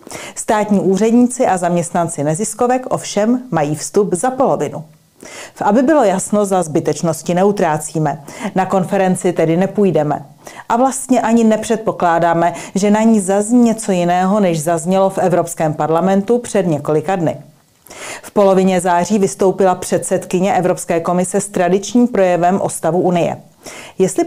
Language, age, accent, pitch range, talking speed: Czech, 40-59, native, 170-205 Hz, 130 wpm